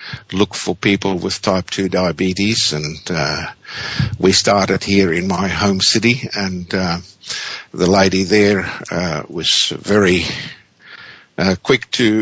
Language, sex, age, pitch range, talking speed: English, male, 60-79, 95-115 Hz, 135 wpm